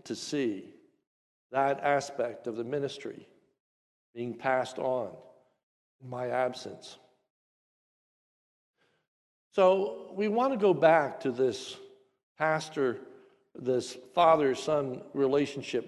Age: 60-79